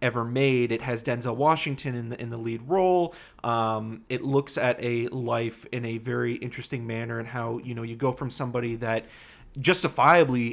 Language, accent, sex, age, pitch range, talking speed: English, American, male, 30-49, 115-135 Hz, 195 wpm